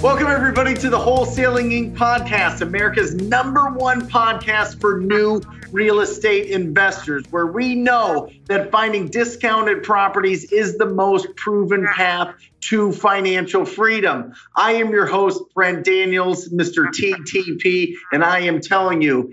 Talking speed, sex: 135 wpm, male